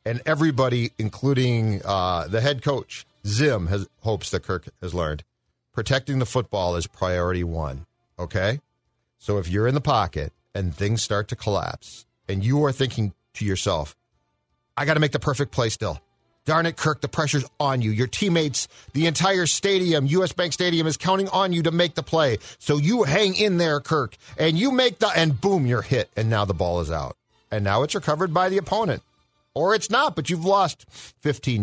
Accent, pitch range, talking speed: American, 105-155 Hz, 195 wpm